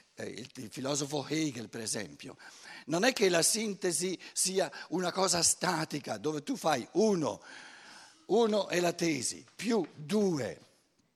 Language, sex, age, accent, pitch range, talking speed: Italian, male, 60-79, native, 145-205 Hz, 135 wpm